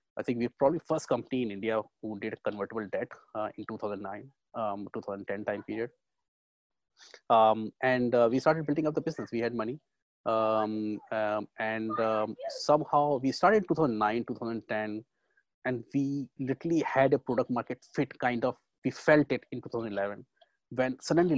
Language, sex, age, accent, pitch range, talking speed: English, male, 20-39, Indian, 105-125 Hz, 165 wpm